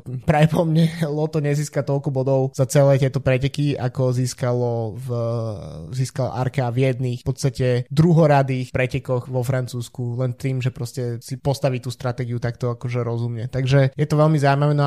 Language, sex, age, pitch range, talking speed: Slovak, male, 20-39, 130-145 Hz, 160 wpm